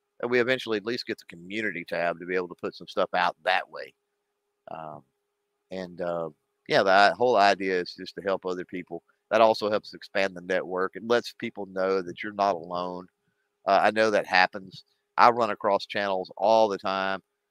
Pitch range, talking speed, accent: 95-130 Hz, 200 wpm, American